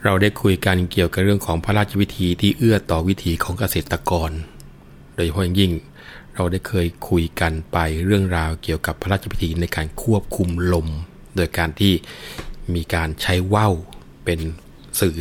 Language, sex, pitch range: Thai, male, 85-100 Hz